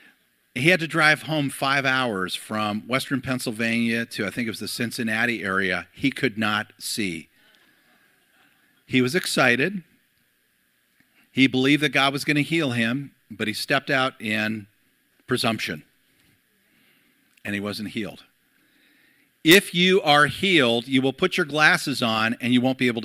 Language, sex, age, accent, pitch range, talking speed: English, male, 40-59, American, 115-150 Hz, 155 wpm